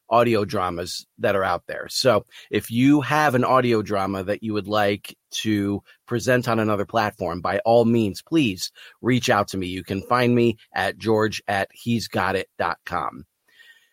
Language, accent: English, American